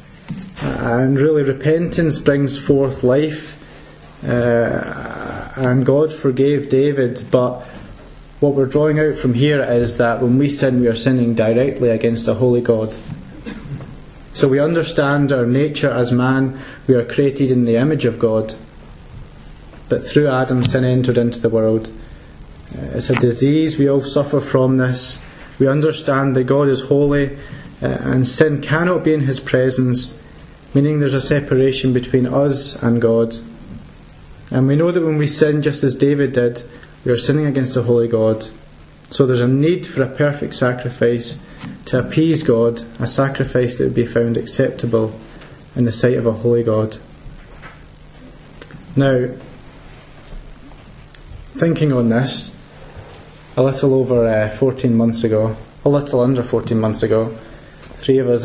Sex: male